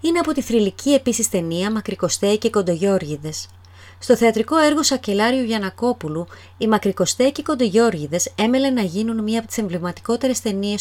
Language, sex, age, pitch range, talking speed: Greek, female, 30-49, 175-245 Hz, 150 wpm